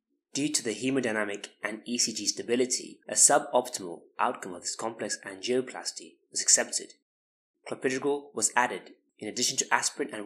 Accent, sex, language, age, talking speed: British, male, English, 20-39, 140 wpm